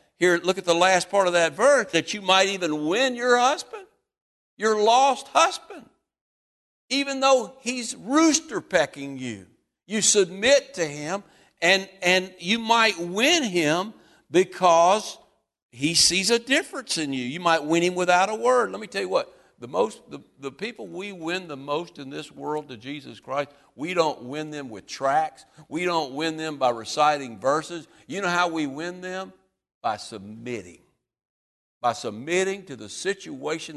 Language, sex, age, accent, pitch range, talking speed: English, male, 60-79, American, 135-185 Hz, 165 wpm